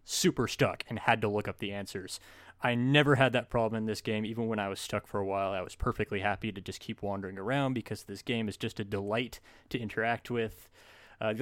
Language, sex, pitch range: English, male, 105-125 Hz